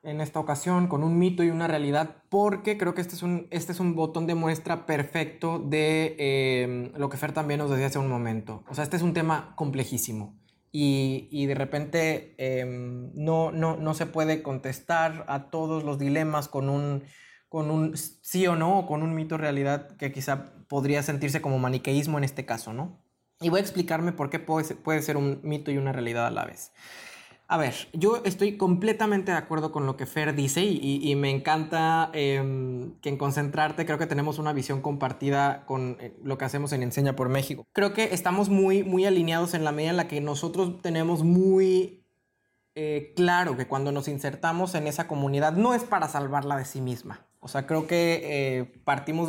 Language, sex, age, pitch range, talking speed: Spanish, male, 20-39, 135-165 Hz, 200 wpm